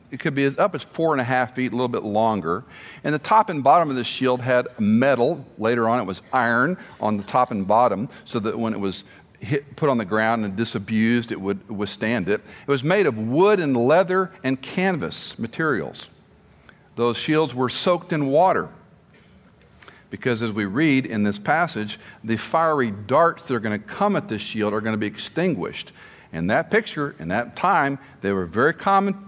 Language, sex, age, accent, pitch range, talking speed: English, male, 50-69, American, 115-155 Hz, 205 wpm